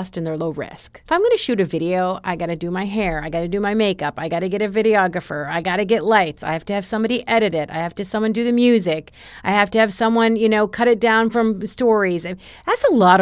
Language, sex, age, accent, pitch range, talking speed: English, female, 40-59, American, 170-220 Hz, 285 wpm